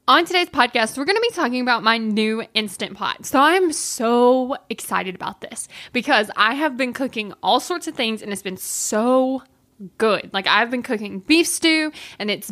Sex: female